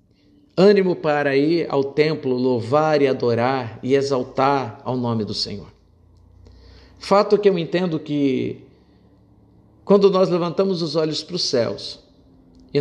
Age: 50-69